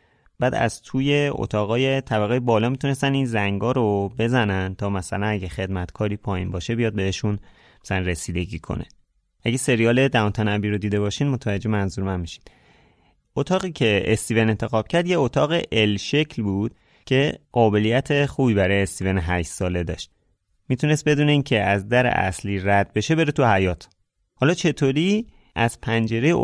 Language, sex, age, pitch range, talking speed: Persian, male, 30-49, 100-135 Hz, 150 wpm